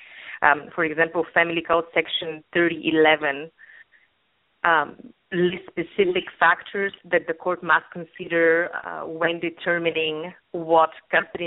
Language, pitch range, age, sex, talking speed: English, 155-175 Hz, 30-49, female, 110 wpm